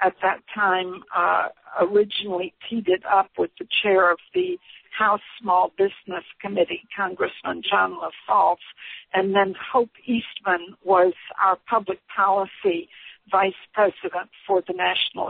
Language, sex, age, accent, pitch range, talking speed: English, female, 60-79, American, 185-235 Hz, 130 wpm